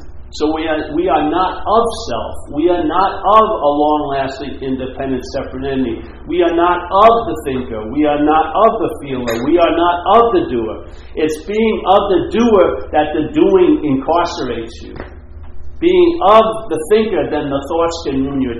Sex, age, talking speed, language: male, 50-69, 175 wpm, English